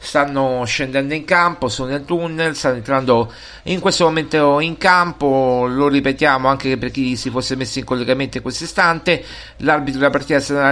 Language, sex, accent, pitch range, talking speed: Italian, male, native, 115-145 Hz, 175 wpm